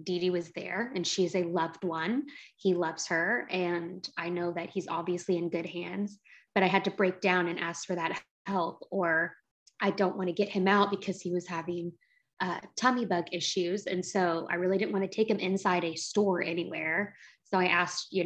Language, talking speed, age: English, 210 wpm, 20-39